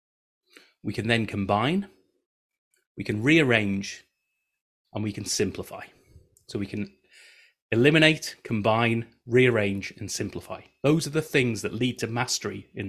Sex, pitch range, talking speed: male, 110-155 Hz, 130 wpm